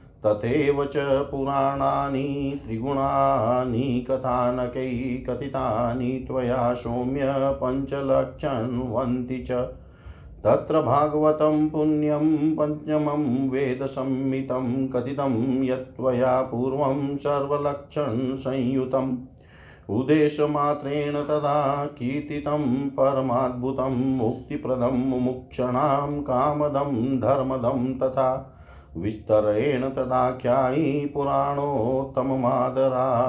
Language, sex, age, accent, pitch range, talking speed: Hindi, male, 40-59, native, 125-140 Hz, 60 wpm